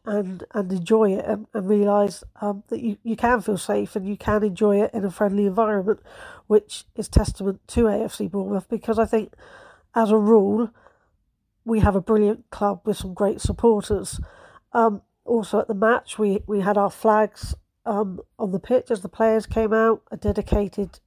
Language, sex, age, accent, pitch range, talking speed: English, female, 40-59, British, 200-225 Hz, 185 wpm